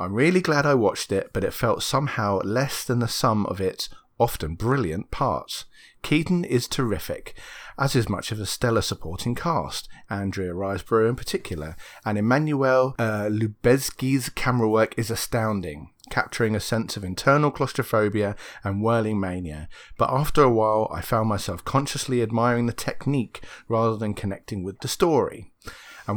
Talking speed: 160 wpm